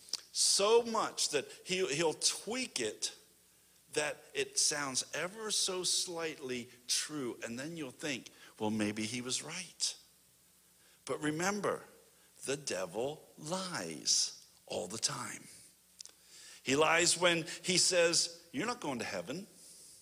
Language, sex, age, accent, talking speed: English, male, 50-69, American, 120 wpm